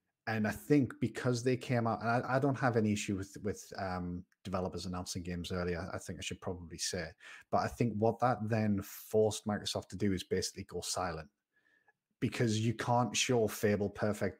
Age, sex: 30-49, male